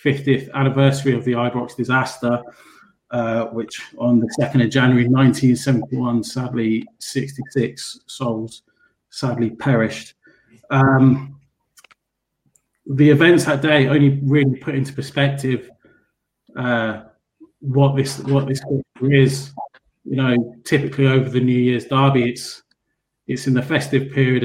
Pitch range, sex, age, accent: 120-135 Hz, male, 30-49, British